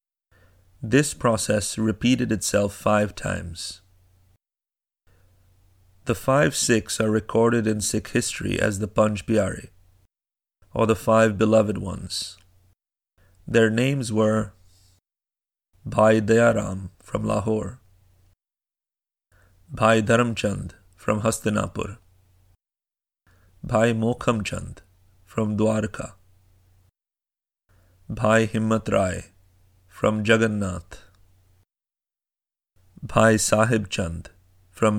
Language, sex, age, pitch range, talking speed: English, male, 30-49, 95-110 Hz, 75 wpm